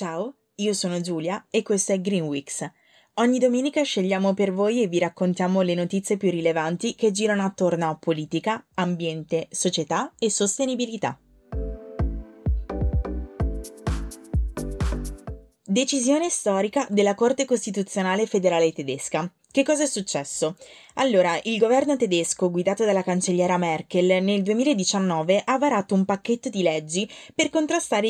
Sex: female